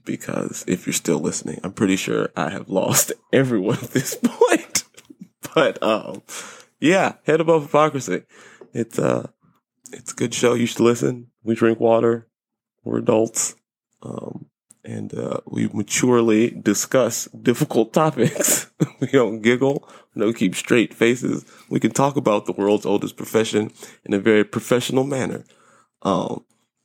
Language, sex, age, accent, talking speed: English, male, 20-39, American, 145 wpm